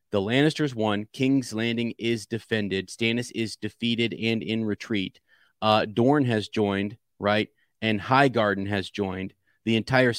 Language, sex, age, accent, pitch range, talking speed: English, male, 30-49, American, 100-120 Hz, 140 wpm